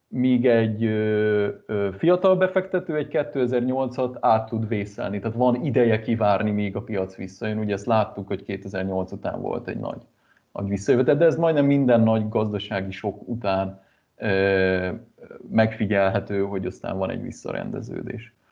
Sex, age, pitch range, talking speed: male, 30-49, 105-125 Hz, 145 wpm